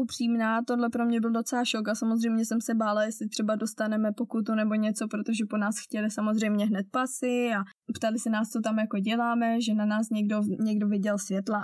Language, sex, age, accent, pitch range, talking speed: Czech, female, 20-39, native, 205-230 Hz, 205 wpm